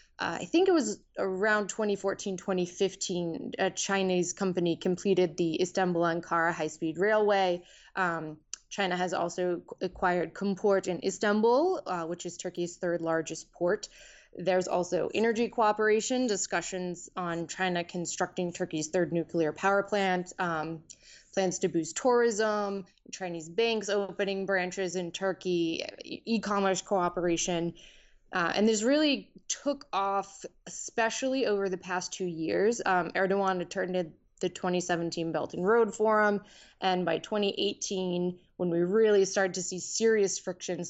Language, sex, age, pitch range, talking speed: English, female, 20-39, 175-205 Hz, 135 wpm